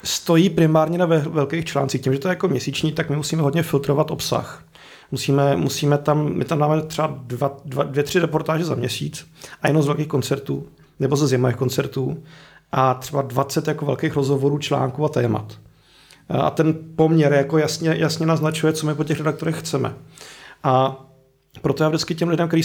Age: 40-59